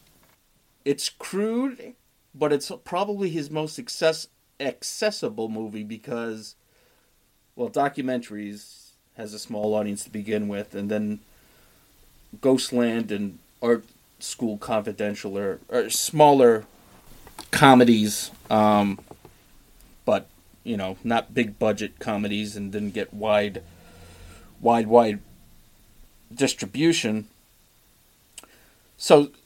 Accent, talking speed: American, 90 wpm